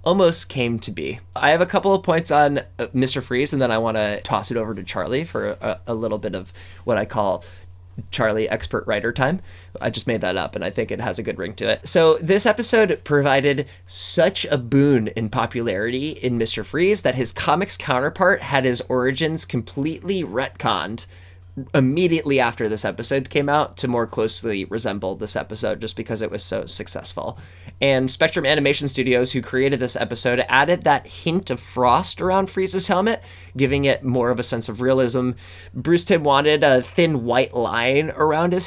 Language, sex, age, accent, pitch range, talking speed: English, male, 20-39, American, 105-145 Hz, 190 wpm